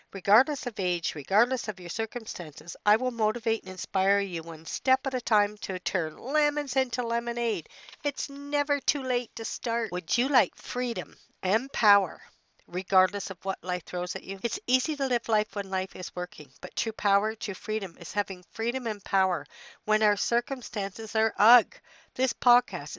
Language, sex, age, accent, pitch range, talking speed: English, female, 60-79, American, 185-235 Hz, 175 wpm